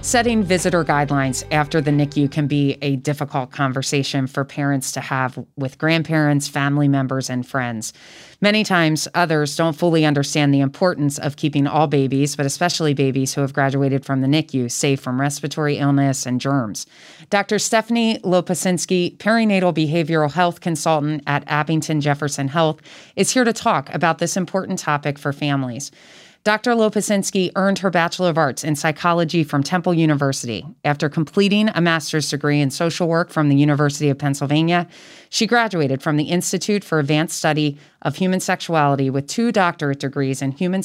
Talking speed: 165 wpm